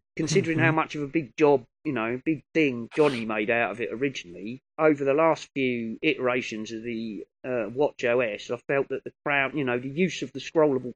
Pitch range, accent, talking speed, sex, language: 120-150 Hz, British, 215 wpm, male, English